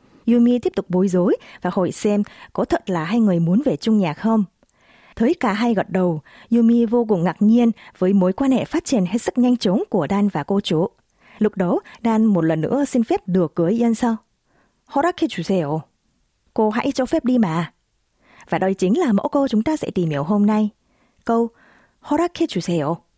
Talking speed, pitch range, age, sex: 195 wpm, 175-240 Hz, 20-39, female